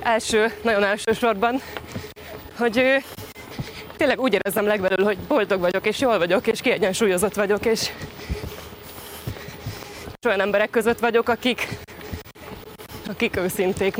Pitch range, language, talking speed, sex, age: 200-235 Hz, Hungarian, 115 wpm, female, 20-39